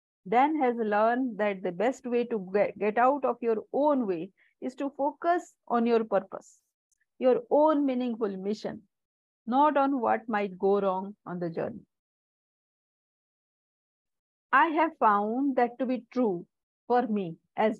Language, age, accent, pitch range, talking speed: English, 50-69, Indian, 225-275 Hz, 150 wpm